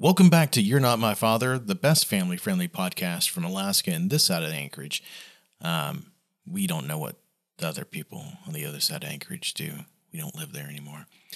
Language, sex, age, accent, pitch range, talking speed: English, male, 40-59, American, 140-185 Hz, 200 wpm